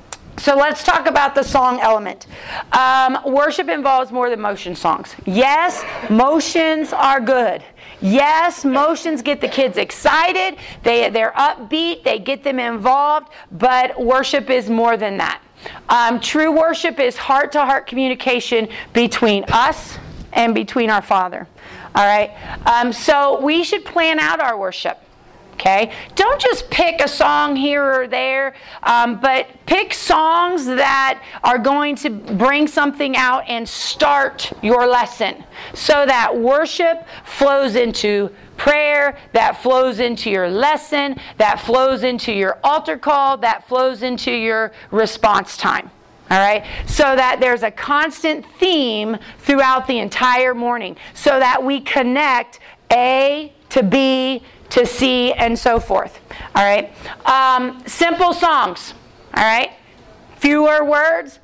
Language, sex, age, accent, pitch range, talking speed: English, female, 40-59, American, 235-295 Hz, 140 wpm